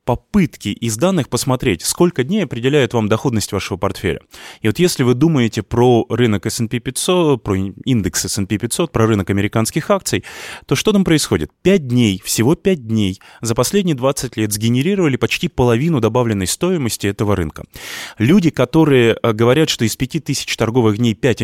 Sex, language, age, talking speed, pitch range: male, Russian, 20-39, 160 wpm, 110-145 Hz